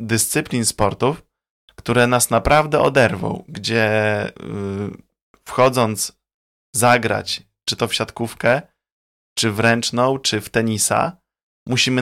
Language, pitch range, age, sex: Polish, 110-125 Hz, 20-39, male